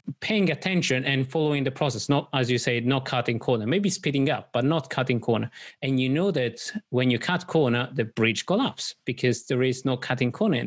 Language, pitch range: English, 120-155 Hz